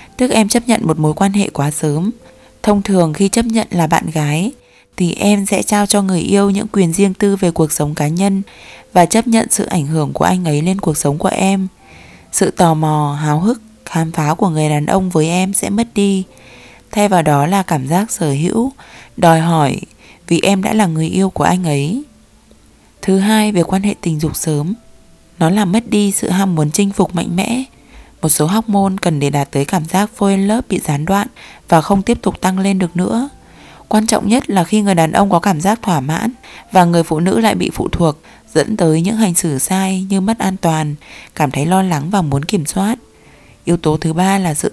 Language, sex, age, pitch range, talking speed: Vietnamese, female, 20-39, 160-200 Hz, 230 wpm